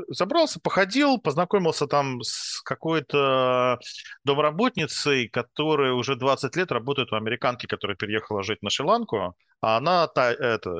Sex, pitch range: male, 120-175 Hz